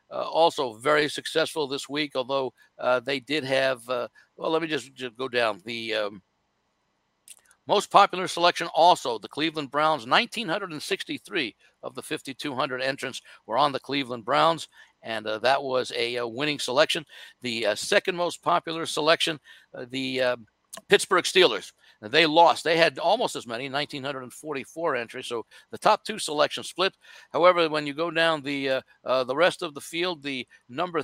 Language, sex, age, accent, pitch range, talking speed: English, male, 60-79, American, 125-160 Hz, 170 wpm